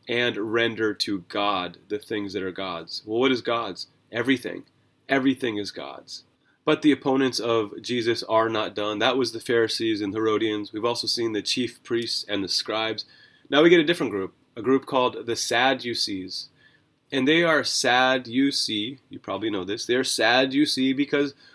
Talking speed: 185 wpm